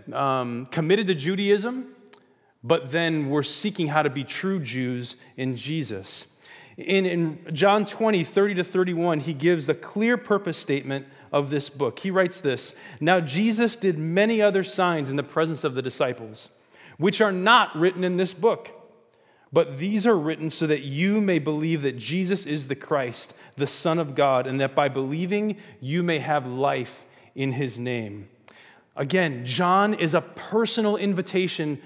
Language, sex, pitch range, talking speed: English, male, 145-195 Hz, 160 wpm